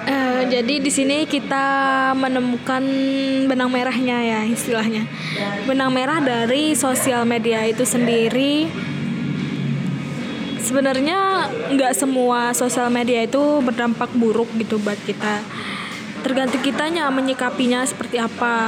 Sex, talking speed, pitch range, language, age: female, 105 wpm, 240-275 Hz, Indonesian, 10-29